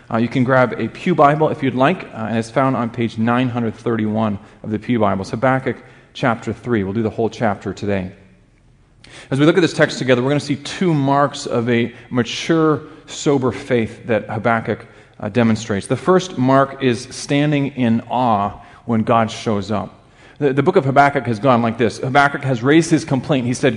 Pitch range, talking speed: 115-145 Hz, 200 wpm